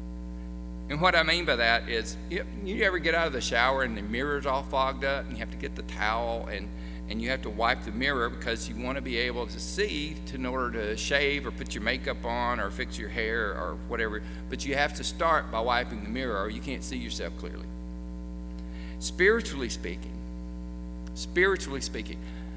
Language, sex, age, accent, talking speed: English, male, 50-69, American, 205 wpm